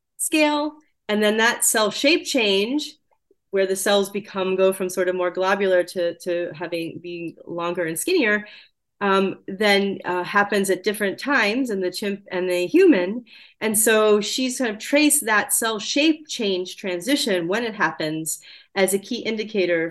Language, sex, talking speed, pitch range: English, female, 165 wpm, 180-245 Hz